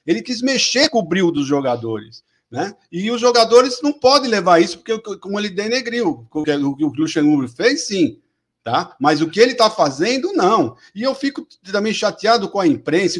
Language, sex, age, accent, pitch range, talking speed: Portuguese, male, 50-69, Brazilian, 165-250 Hz, 190 wpm